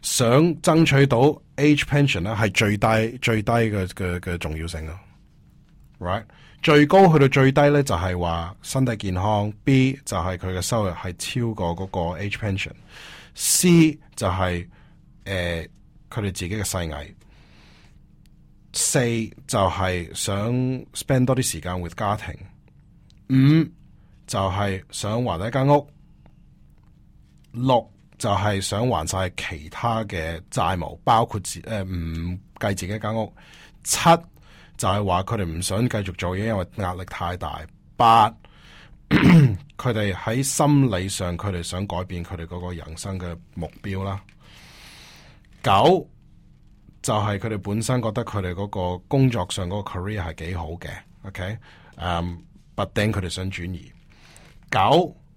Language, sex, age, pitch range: Chinese, male, 20-39, 90-120 Hz